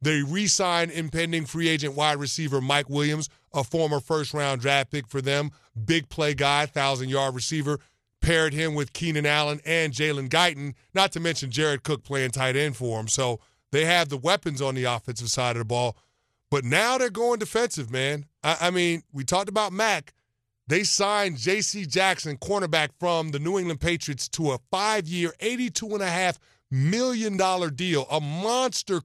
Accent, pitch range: American, 140-180 Hz